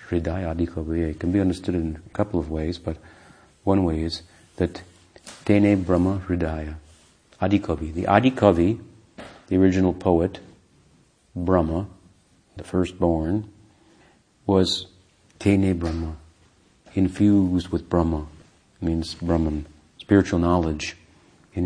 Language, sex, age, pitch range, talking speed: English, male, 50-69, 80-95 Hz, 110 wpm